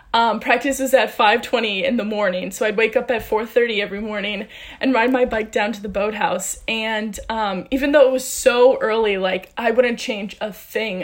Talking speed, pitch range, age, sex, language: 215 wpm, 215-265 Hz, 20-39, female, English